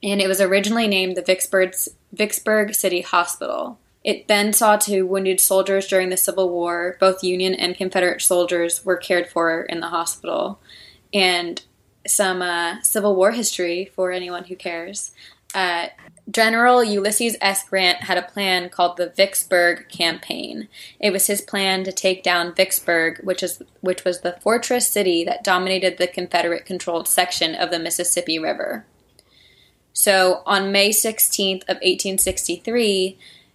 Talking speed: 145 wpm